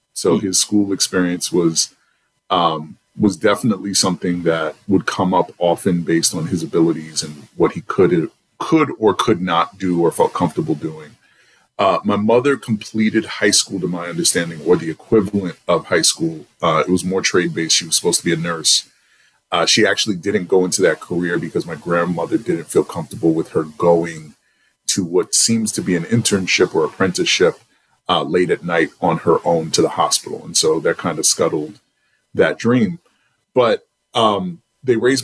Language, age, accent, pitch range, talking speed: English, 30-49, American, 85-110 Hz, 180 wpm